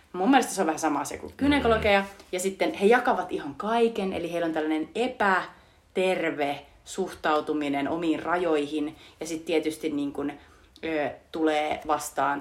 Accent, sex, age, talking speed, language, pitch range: native, female, 30-49, 135 wpm, Finnish, 155-205 Hz